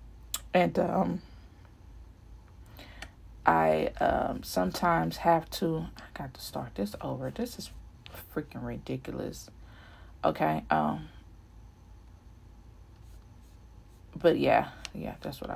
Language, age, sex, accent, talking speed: English, 30-49, female, American, 95 wpm